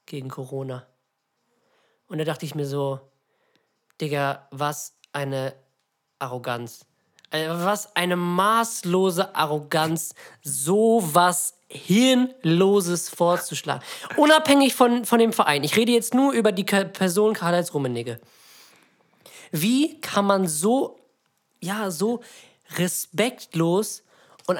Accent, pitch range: German, 175-225 Hz